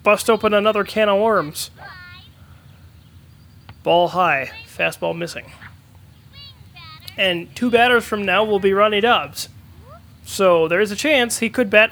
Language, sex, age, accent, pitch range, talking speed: English, male, 30-49, American, 155-215 Hz, 135 wpm